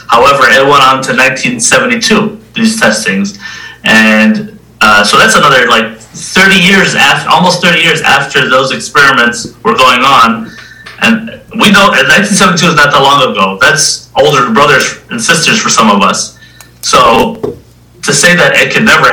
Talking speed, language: 160 wpm, English